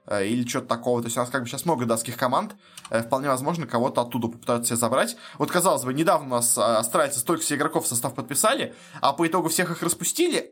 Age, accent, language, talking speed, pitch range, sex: 20-39, native, Russian, 220 wpm, 120-160 Hz, male